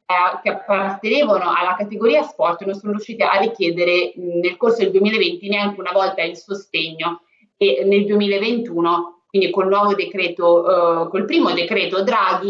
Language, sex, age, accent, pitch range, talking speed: Italian, female, 20-39, native, 180-225 Hz, 150 wpm